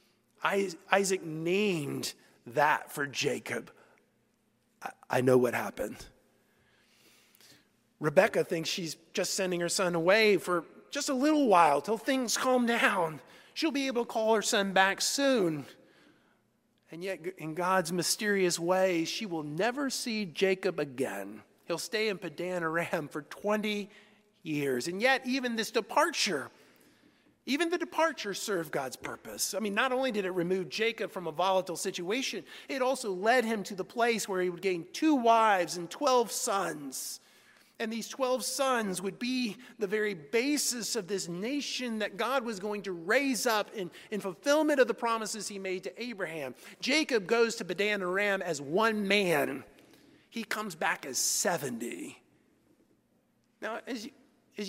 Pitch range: 180-245 Hz